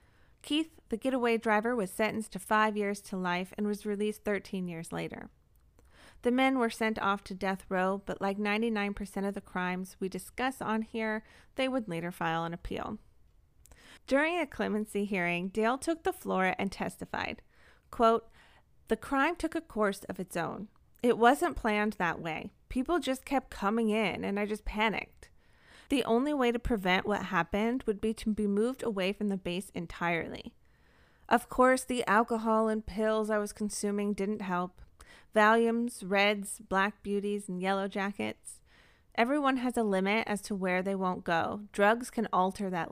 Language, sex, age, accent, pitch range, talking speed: English, female, 30-49, American, 190-230 Hz, 170 wpm